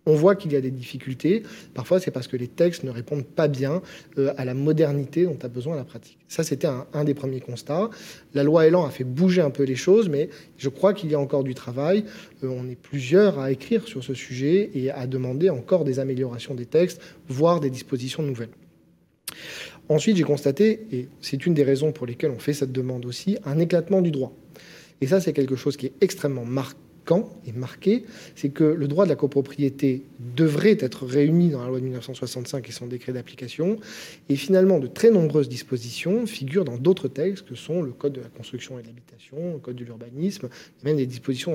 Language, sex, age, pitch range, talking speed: French, male, 40-59, 130-170 Hz, 210 wpm